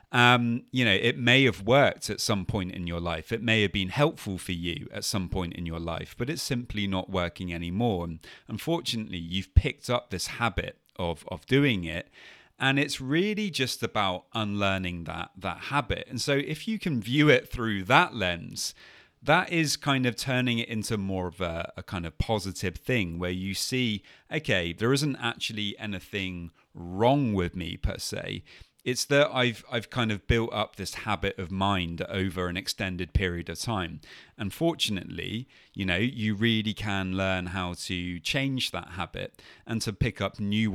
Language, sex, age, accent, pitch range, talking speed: English, male, 30-49, British, 90-125 Hz, 185 wpm